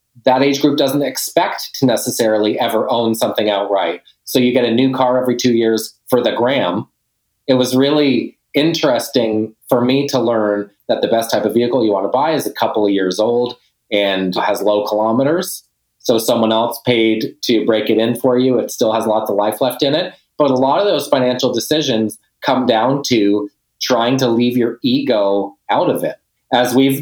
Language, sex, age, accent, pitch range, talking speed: English, male, 30-49, American, 110-130 Hz, 200 wpm